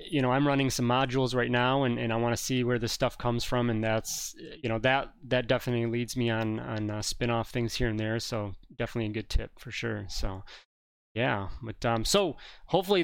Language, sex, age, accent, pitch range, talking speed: English, male, 30-49, American, 120-140 Hz, 225 wpm